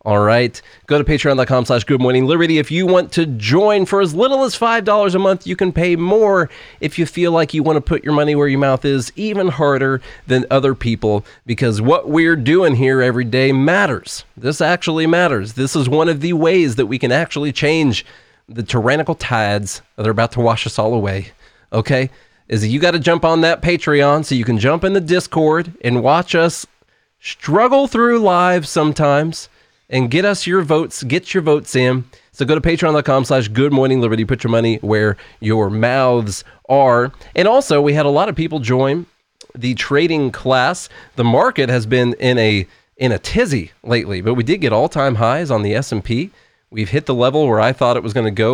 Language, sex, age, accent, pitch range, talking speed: English, male, 30-49, American, 120-165 Hz, 200 wpm